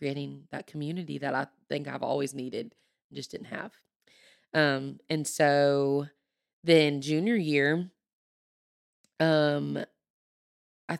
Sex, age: female, 20-39